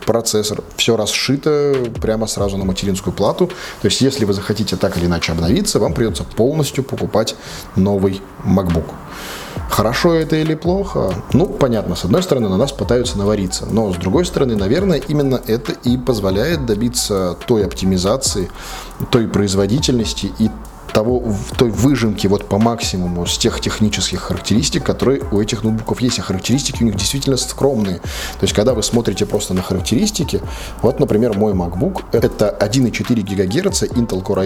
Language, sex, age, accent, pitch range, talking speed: Russian, male, 20-39, native, 95-125 Hz, 160 wpm